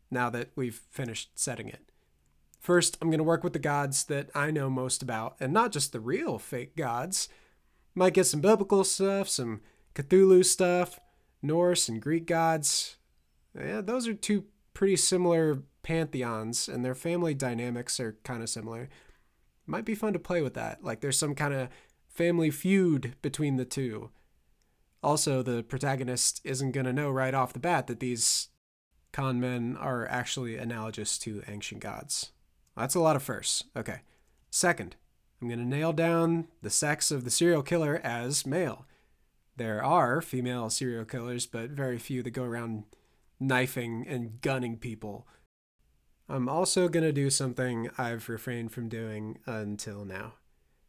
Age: 20-39